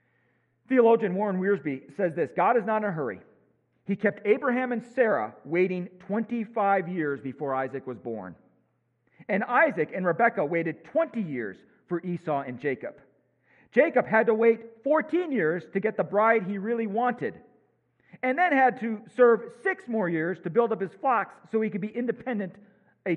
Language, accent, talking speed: English, American, 170 wpm